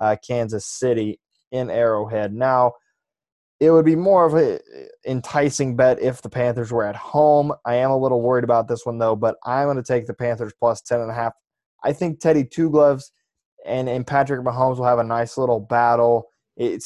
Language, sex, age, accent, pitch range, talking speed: English, male, 20-39, American, 115-135 Hz, 200 wpm